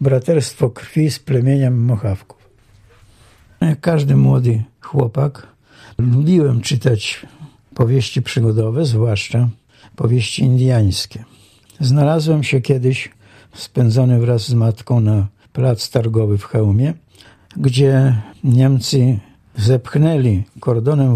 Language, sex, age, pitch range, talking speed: Polish, male, 60-79, 110-140 Hz, 90 wpm